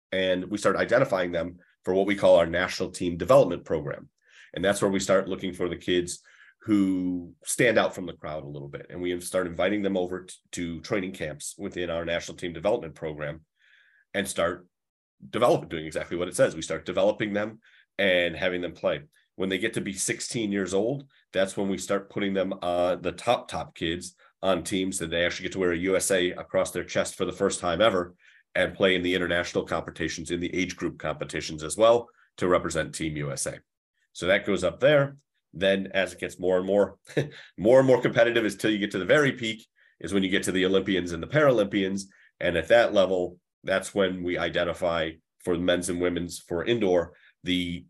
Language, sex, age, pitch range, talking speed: English, male, 30-49, 85-100 Hz, 210 wpm